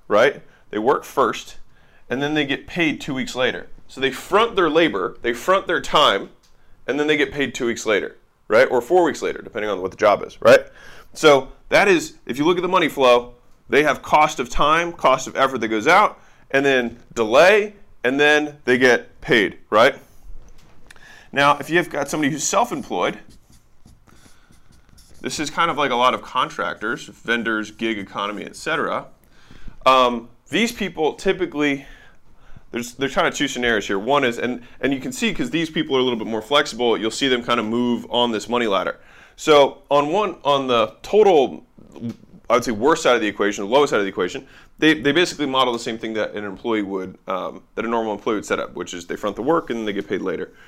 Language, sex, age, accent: English, male, 20-39, American